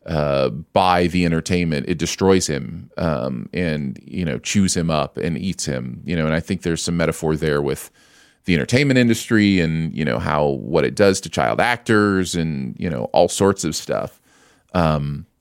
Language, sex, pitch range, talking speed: English, male, 80-100 Hz, 185 wpm